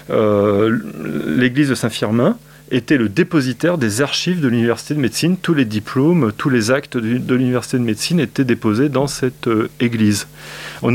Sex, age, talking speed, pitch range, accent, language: male, 30-49, 170 wpm, 115-145 Hz, French, French